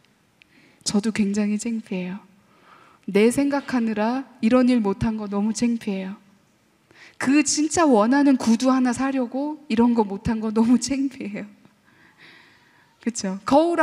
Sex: female